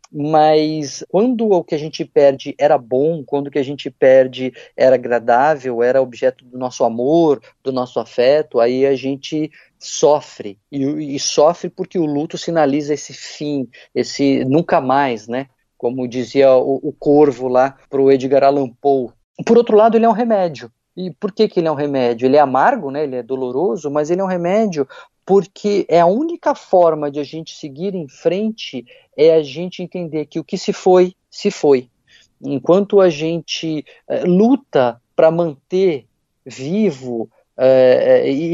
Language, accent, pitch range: Portuguese, Brazilian, 130-175 Hz